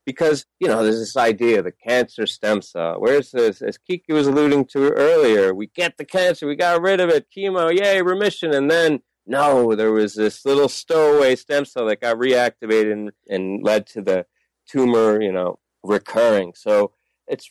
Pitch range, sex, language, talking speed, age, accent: 120-165 Hz, male, English, 185 wpm, 40-59, American